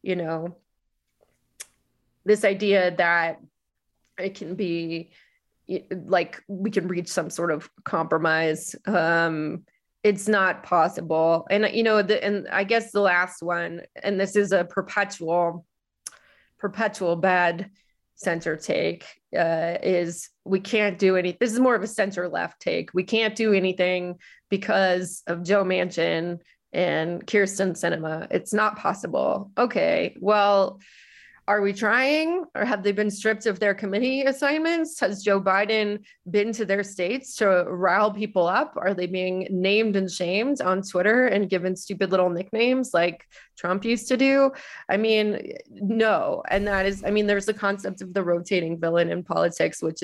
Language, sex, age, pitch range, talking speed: English, female, 20-39, 175-210 Hz, 155 wpm